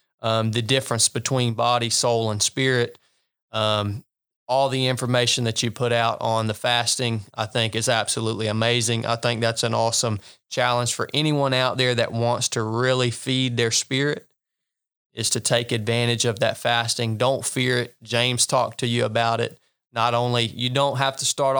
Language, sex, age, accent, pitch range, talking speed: English, male, 20-39, American, 115-135 Hz, 180 wpm